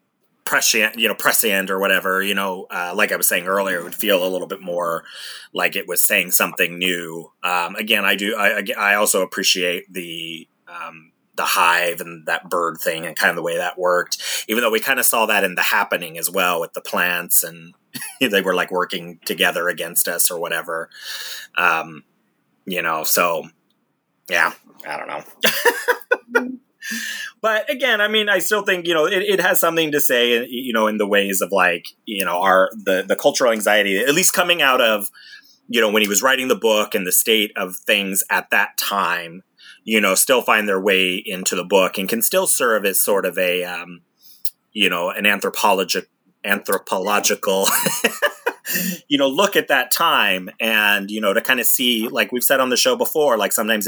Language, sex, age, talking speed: English, male, 30-49, 200 wpm